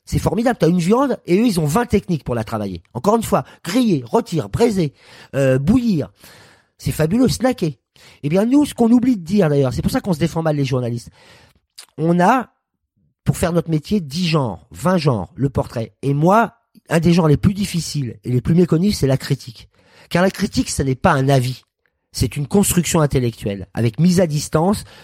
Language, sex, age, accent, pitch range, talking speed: French, male, 40-59, French, 125-180 Hz, 210 wpm